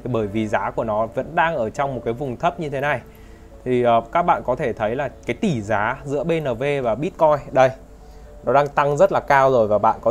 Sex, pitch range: male, 110-140 Hz